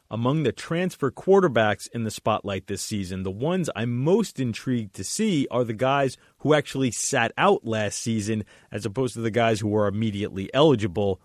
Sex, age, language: male, 30-49, English